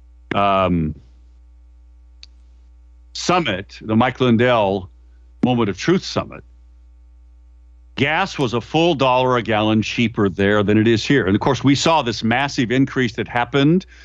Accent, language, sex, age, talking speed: American, English, male, 50-69, 135 wpm